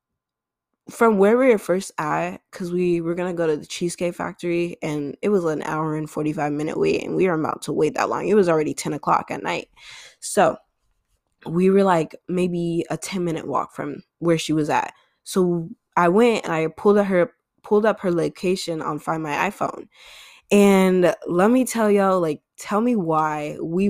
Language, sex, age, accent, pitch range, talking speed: English, female, 10-29, American, 160-195 Hz, 195 wpm